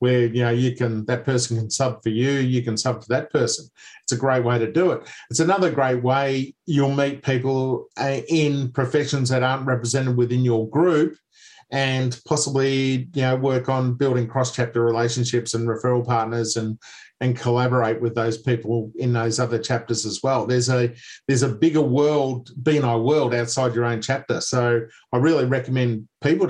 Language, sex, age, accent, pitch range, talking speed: English, male, 50-69, Australian, 120-145 Hz, 185 wpm